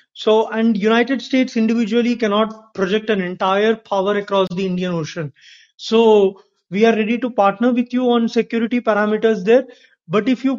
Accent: Indian